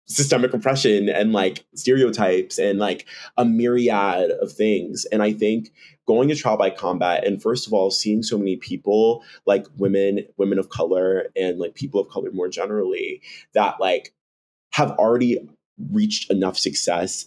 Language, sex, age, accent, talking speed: English, male, 20-39, American, 160 wpm